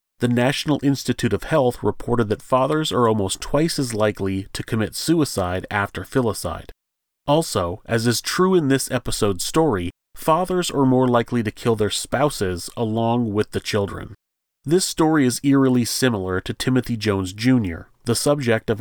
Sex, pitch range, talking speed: male, 105-135 Hz, 160 wpm